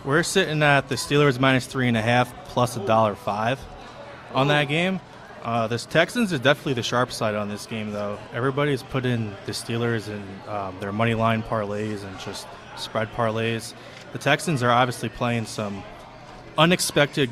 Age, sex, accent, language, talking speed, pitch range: 20-39, male, American, English, 175 wpm, 110-130 Hz